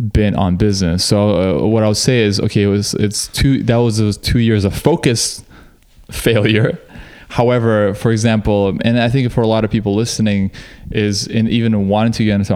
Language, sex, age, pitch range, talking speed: English, male, 20-39, 100-110 Hz, 200 wpm